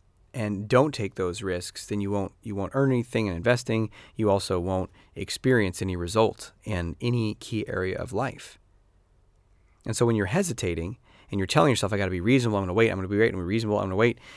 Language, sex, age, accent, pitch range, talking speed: English, male, 30-49, American, 95-125 Hz, 235 wpm